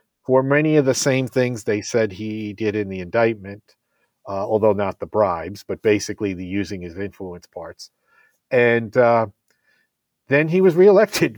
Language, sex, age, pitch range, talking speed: English, male, 50-69, 100-140 Hz, 165 wpm